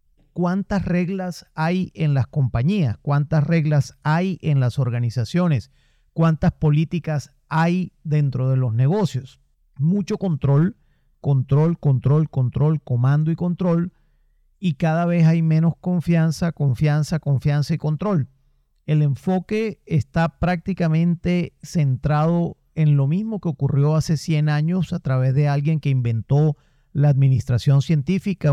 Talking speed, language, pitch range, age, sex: 125 wpm, Spanish, 140-170 Hz, 40-59, male